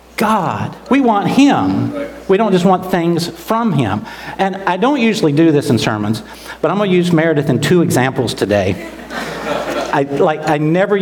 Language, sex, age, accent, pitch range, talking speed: Russian, male, 50-69, American, 140-180 Hz, 180 wpm